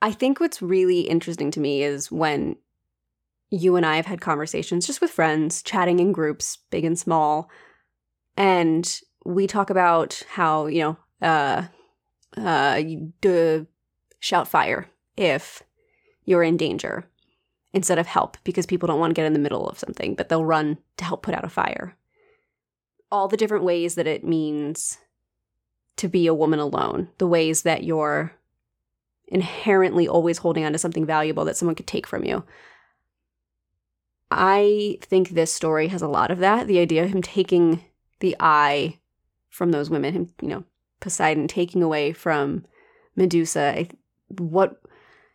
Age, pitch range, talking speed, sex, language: 20-39, 155-190 Hz, 155 wpm, female, English